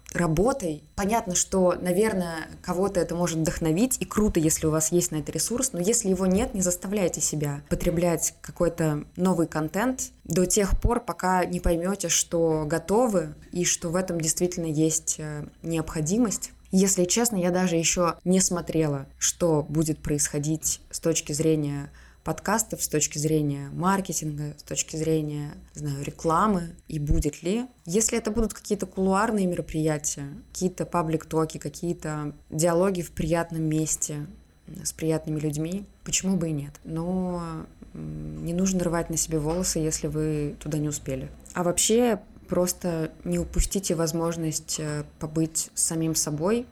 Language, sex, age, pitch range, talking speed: Russian, female, 20-39, 155-185 Hz, 140 wpm